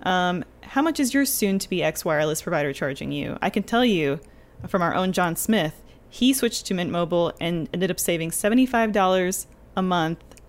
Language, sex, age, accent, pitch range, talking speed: English, female, 20-39, American, 160-205 Hz, 175 wpm